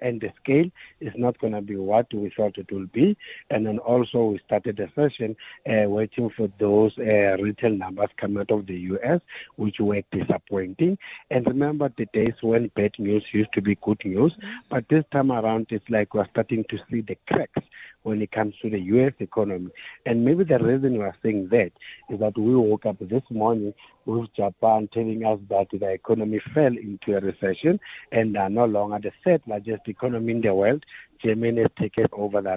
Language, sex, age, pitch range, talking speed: English, male, 60-79, 105-120 Hz, 200 wpm